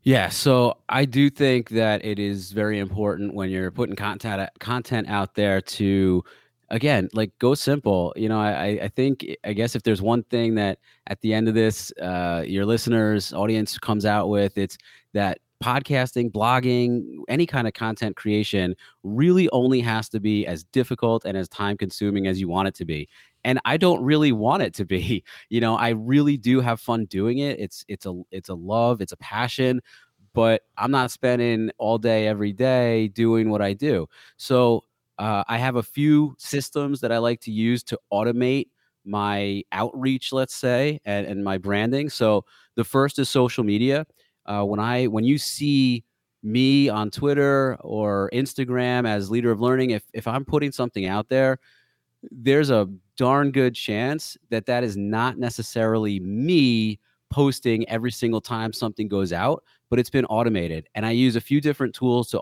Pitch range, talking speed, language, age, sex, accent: 100-130 Hz, 185 wpm, English, 30-49, male, American